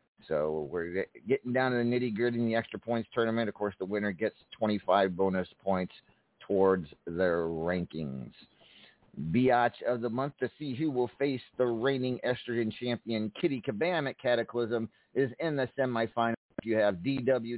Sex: male